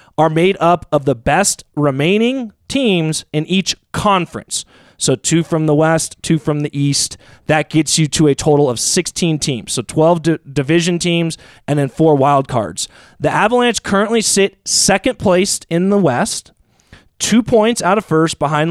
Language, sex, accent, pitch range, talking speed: English, male, American, 150-195 Hz, 170 wpm